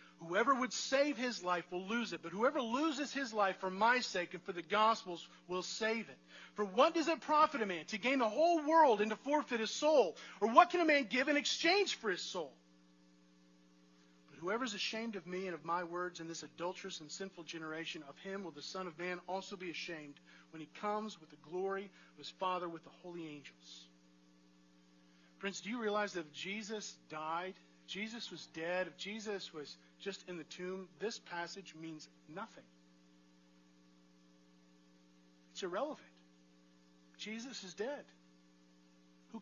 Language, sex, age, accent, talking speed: English, male, 40-59, American, 180 wpm